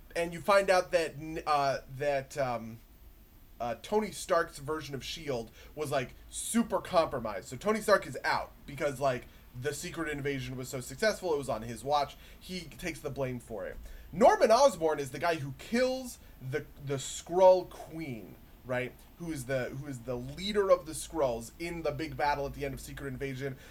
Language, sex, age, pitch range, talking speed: English, male, 20-39, 140-185 Hz, 185 wpm